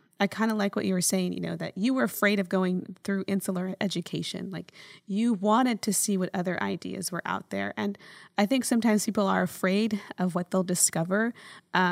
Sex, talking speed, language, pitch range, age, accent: female, 210 wpm, English, 185-215 Hz, 20-39, American